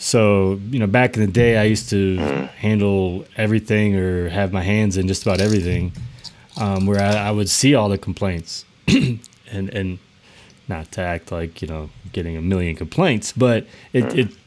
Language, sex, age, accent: English, male, 20-39, American